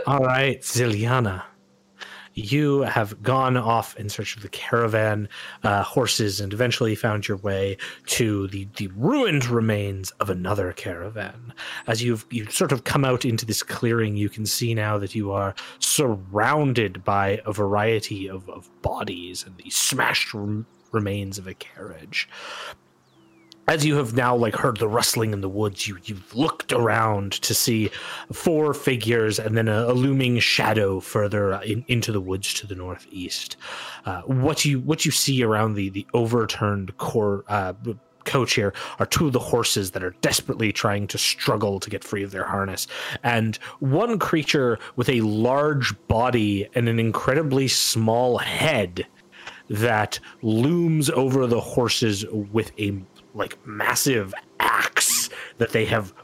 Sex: male